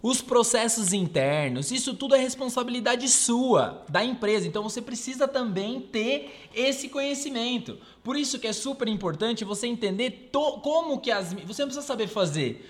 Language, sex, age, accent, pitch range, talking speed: Portuguese, male, 20-39, Brazilian, 200-250 Hz, 155 wpm